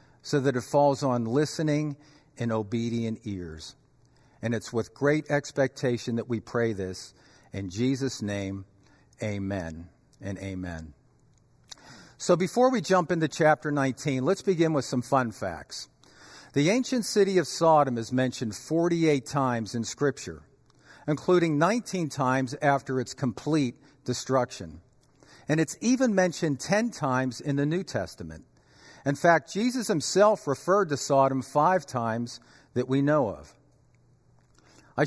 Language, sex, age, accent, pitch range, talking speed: English, male, 50-69, American, 120-155 Hz, 135 wpm